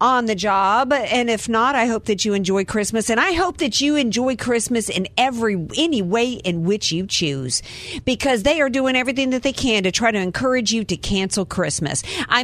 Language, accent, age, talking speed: English, American, 50-69, 210 wpm